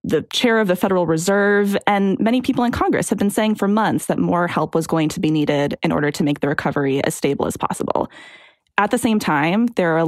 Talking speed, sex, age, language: 245 wpm, female, 20-39, English